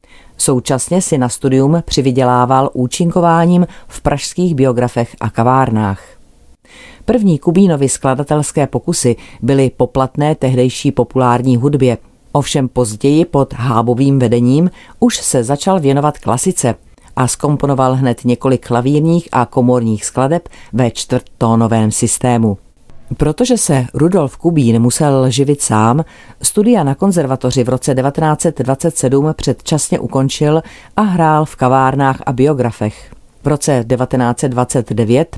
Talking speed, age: 110 wpm, 40-59